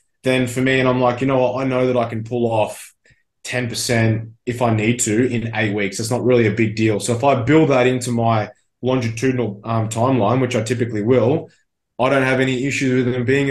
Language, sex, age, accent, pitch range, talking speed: English, male, 20-39, Australian, 120-130 Hz, 230 wpm